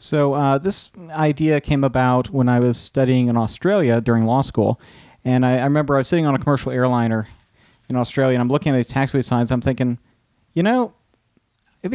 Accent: American